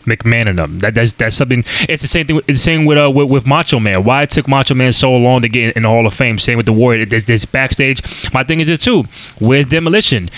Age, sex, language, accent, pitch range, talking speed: 20-39, male, English, American, 120-145 Hz, 285 wpm